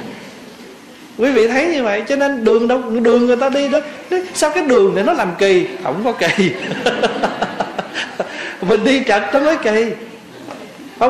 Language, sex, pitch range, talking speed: Vietnamese, male, 185-245 Hz, 170 wpm